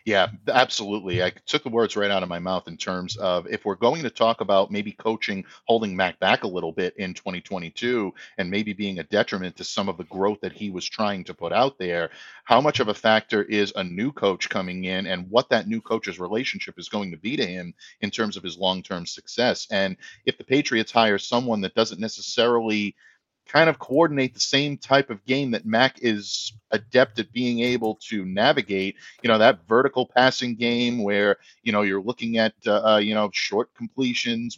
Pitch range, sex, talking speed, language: 100-120 Hz, male, 210 wpm, English